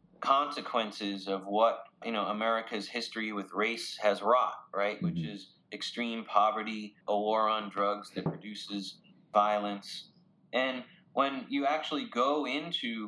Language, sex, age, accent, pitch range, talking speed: English, male, 30-49, American, 100-115 Hz, 135 wpm